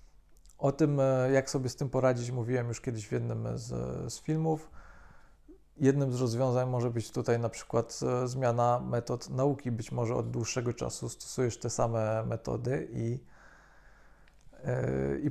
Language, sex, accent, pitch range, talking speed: Polish, male, native, 115-135 Hz, 145 wpm